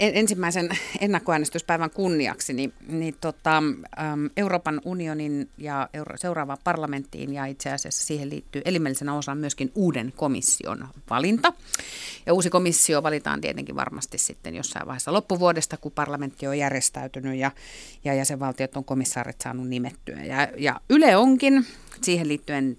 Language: Finnish